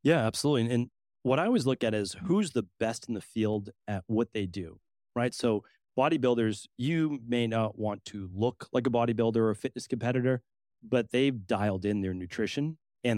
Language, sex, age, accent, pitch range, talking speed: English, male, 30-49, American, 100-120 Hz, 190 wpm